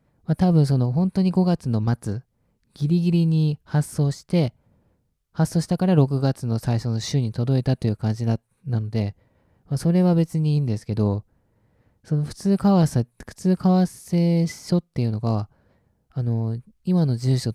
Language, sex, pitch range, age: Japanese, male, 115-155 Hz, 20-39